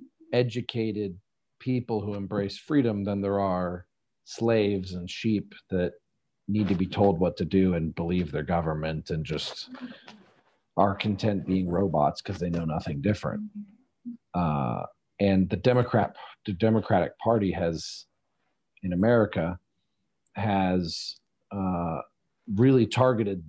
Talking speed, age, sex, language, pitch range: 125 wpm, 40-59, male, Slovak, 95-125 Hz